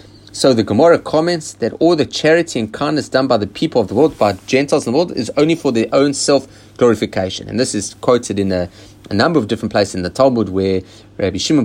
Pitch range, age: 100-145 Hz, 30-49